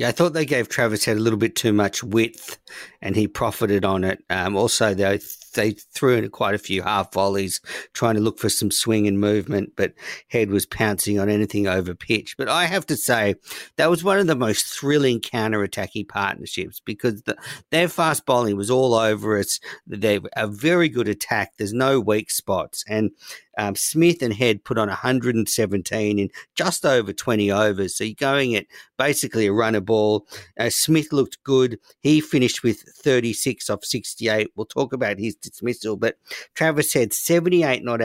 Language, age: English, 50-69